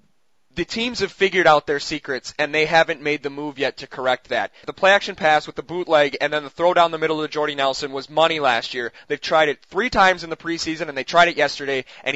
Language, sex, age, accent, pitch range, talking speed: English, male, 20-39, American, 145-175 Hz, 250 wpm